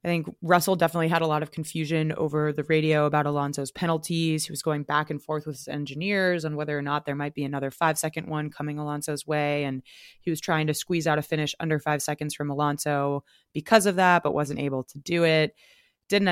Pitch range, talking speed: 145-165 Hz, 225 wpm